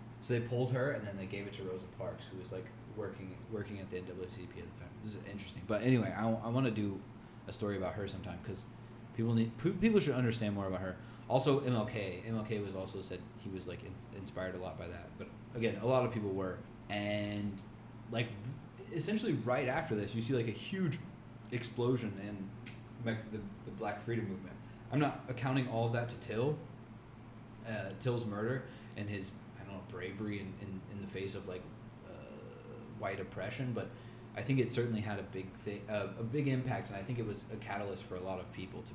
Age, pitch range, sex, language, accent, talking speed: 20-39, 105-125 Hz, male, English, American, 215 wpm